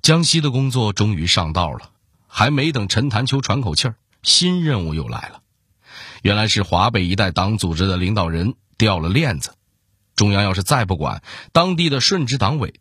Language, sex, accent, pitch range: Chinese, male, native, 95-145 Hz